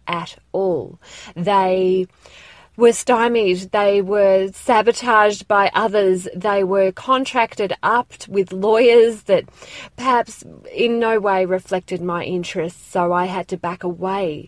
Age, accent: 30-49, Australian